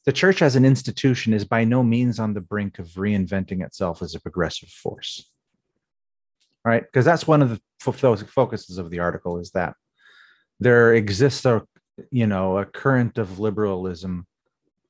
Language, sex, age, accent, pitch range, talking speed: English, male, 30-49, American, 95-135 Hz, 170 wpm